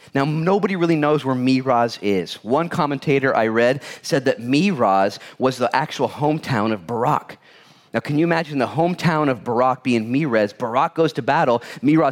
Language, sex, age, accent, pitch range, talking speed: English, male, 30-49, American, 105-150 Hz, 175 wpm